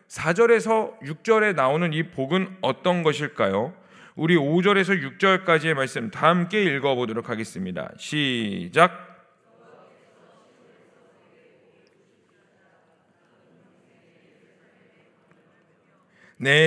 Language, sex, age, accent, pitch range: Korean, male, 40-59, native, 155-205 Hz